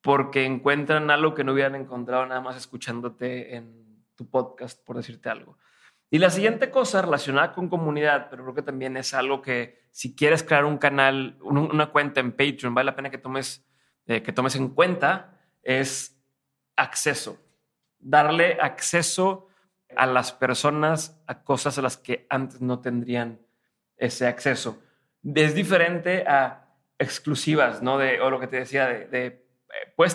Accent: Mexican